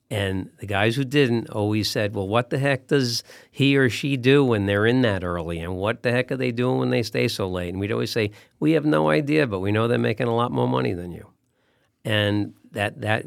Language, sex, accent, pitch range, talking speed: English, male, American, 95-125 Hz, 250 wpm